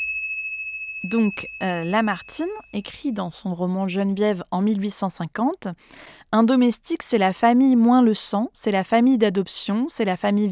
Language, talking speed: French, 145 wpm